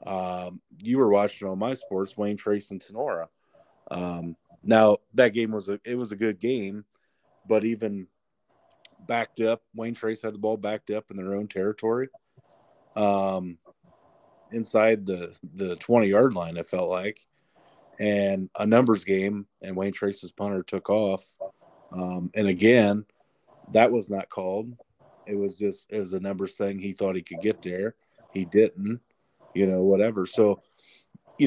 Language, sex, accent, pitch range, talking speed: English, male, American, 95-110 Hz, 160 wpm